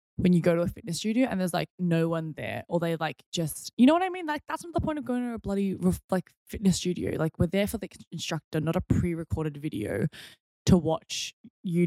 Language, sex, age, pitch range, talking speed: English, female, 10-29, 150-185 Hz, 245 wpm